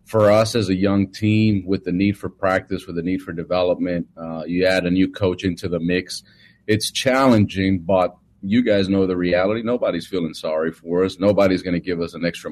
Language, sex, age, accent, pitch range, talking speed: English, male, 40-59, American, 85-100 Hz, 215 wpm